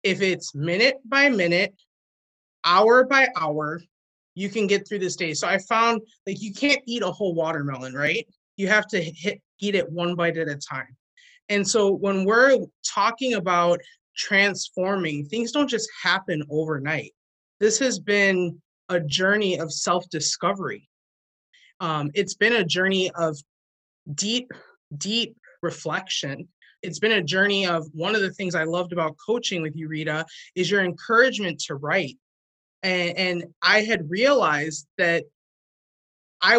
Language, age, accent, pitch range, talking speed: English, 20-39, American, 160-215 Hz, 155 wpm